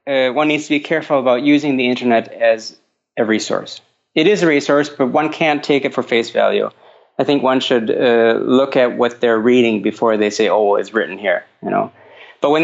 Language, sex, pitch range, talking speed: English, male, 115-150 Hz, 220 wpm